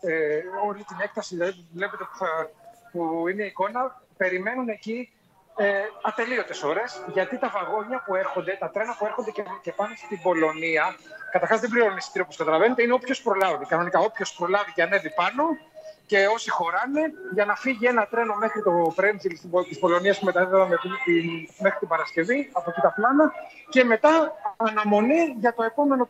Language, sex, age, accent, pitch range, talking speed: Greek, male, 30-49, native, 175-235 Hz, 155 wpm